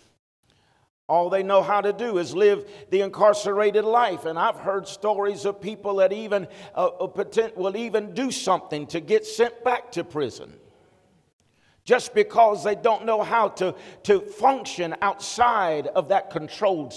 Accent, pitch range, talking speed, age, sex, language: American, 185-230 Hz, 150 wpm, 50-69, male, English